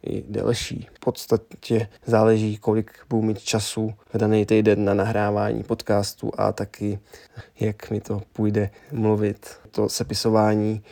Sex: male